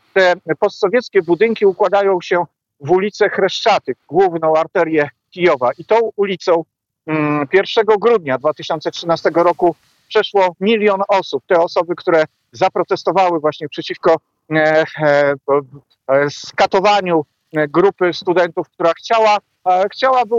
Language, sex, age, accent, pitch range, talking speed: Polish, male, 50-69, native, 155-190 Hz, 110 wpm